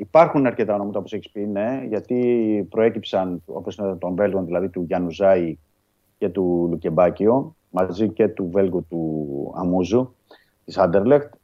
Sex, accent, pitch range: male, native, 95-125 Hz